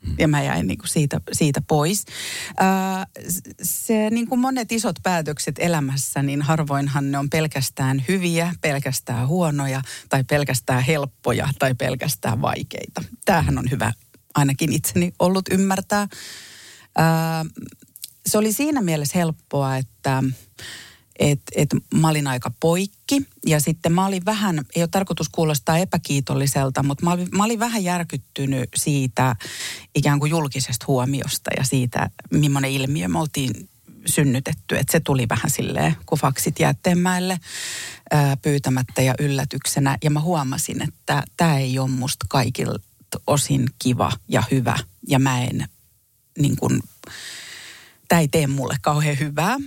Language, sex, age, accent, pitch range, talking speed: Finnish, female, 40-59, native, 135-175 Hz, 130 wpm